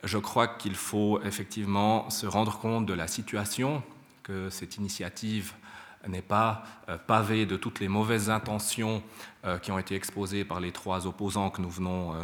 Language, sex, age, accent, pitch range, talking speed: French, male, 30-49, French, 95-105 Hz, 160 wpm